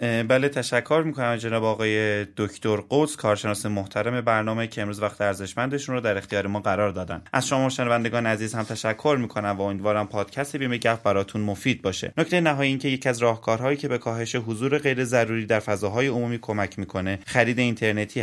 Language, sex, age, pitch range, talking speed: Persian, male, 20-39, 105-130 Hz, 190 wpm